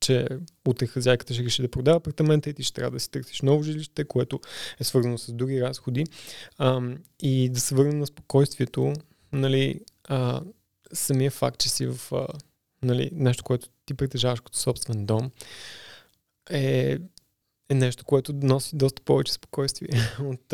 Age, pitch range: 20-39, 120-140 Hz